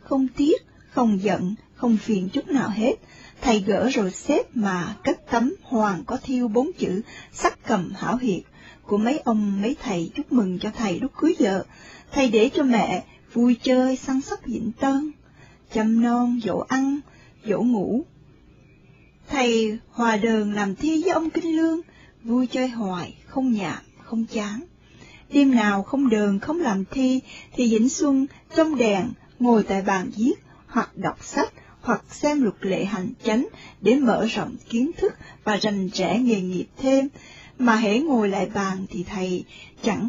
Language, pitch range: Vietnamese, 210-275 Hz